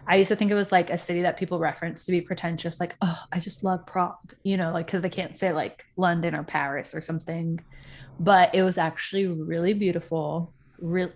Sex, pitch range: female, 165-190 Hz